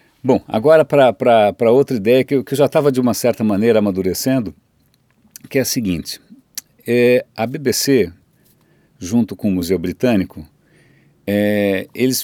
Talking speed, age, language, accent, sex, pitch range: 130 wpm, 50-69, Portuguese, Brazilian, male, 110-145 Hz